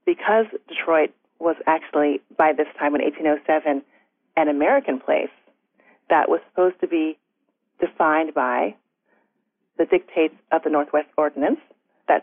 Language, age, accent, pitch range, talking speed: English, 40-59, American, 160-240 Hz, 130 wpm